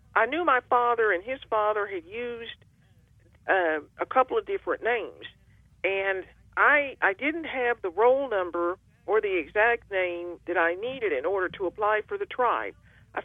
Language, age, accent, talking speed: English, 50-69, American, 170 wpm